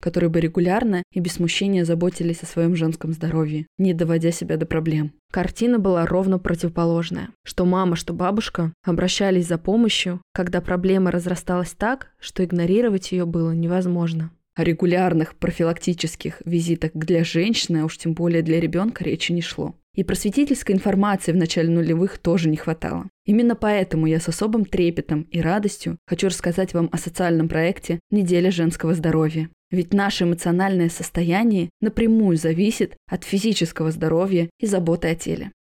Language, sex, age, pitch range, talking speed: Russian, female, 20-39, 165-190 Hz, 150 wpm